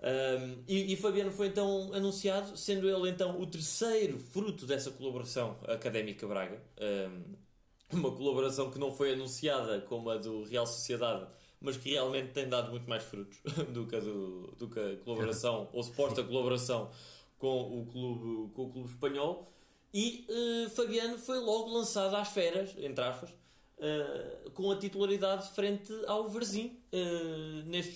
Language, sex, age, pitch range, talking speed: Portuguese, male, 20-39, 125-190 Hz, 155 wpm